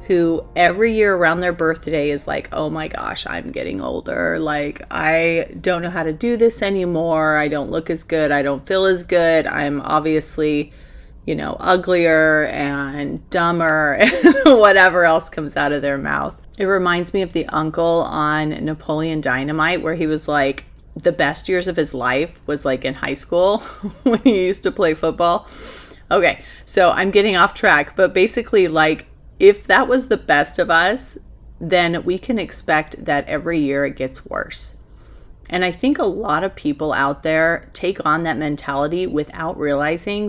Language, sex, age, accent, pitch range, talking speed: English, female, 30-49, American, 145-180 Hz, 175 wpm